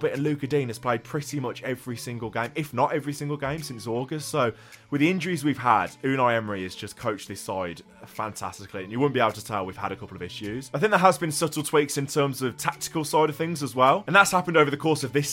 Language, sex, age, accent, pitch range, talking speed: English, male, 20-39, British, 115-150 Hz, 270 wpm